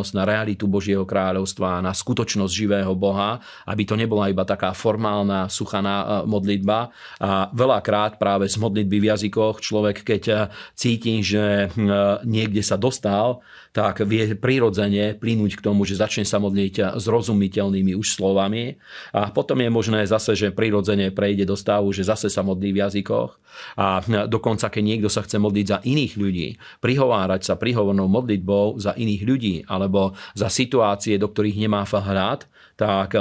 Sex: male